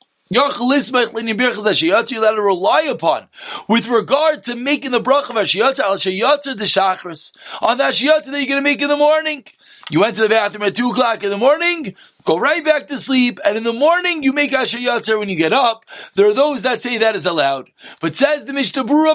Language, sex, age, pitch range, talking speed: English, male, 40-59, 240-315 Hz, 220 wpm